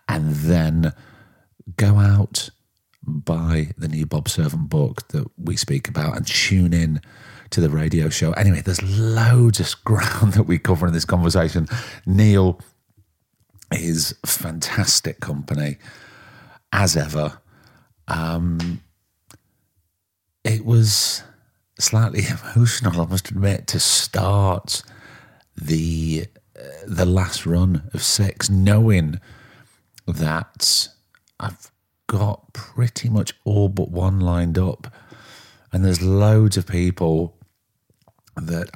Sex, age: male, 40-59